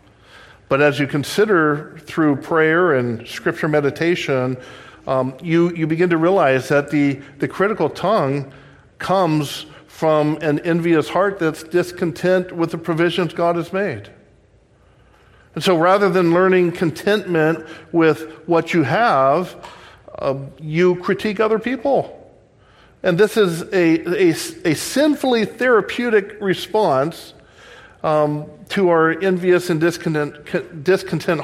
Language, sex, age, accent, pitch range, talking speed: English, male, 50-69, American, 130-175 Hz, 120 wpm